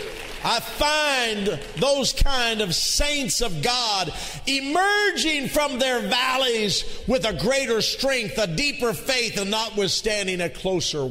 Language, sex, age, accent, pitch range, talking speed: English, male, 50-69, American, 130-190 Hz, 125 wpm